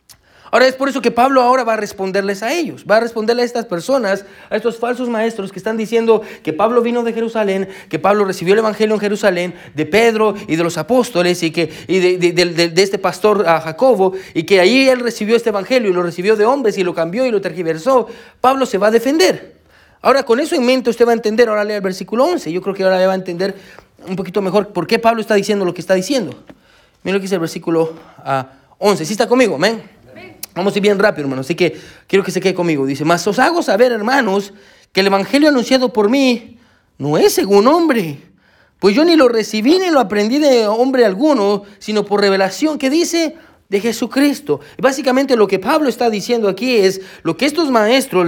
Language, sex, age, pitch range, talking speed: Spanish, male, 30-49, 185-250 Hz, 230 wpm